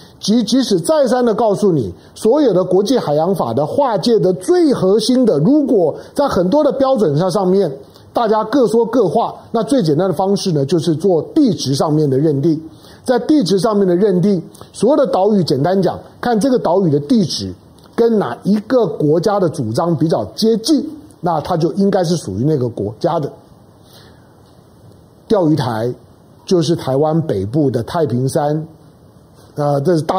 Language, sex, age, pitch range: Chinese, male, 50-69, 150-215 Hz